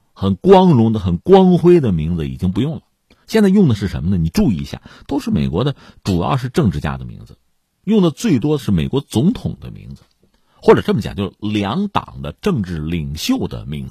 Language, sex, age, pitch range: Chinese, male, 50-69, 95-160 Hz